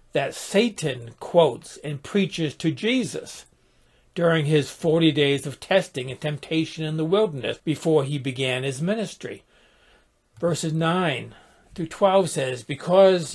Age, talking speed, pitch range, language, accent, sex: 60-79, 130 wpm, 140-185 Hz, English, American, male